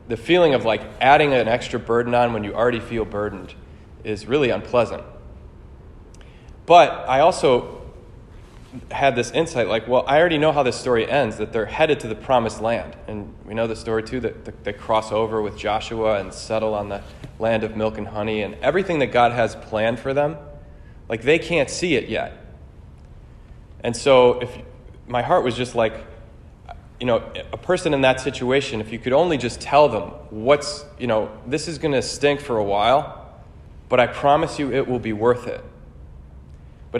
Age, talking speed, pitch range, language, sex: 20-39, 190 wpm, 105-130 Hz, English, male